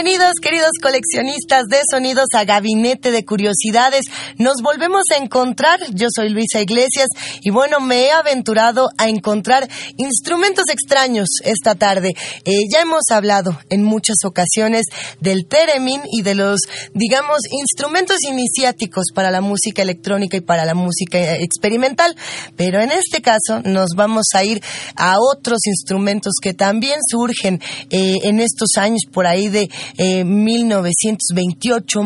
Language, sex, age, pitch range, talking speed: Spanish, female, 20-39, 200-255 Hz, 140 wpm